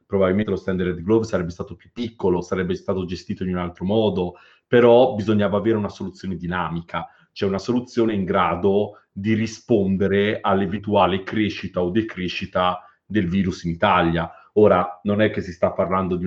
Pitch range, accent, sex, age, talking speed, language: 90-110 Hz, native, male, 40-59, 165 wpm, Italian